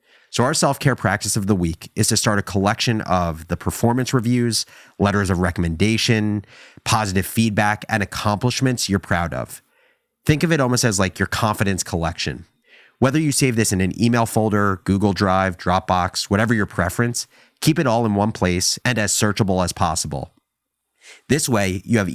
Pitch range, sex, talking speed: 90-115 Hz, male, 175 wpm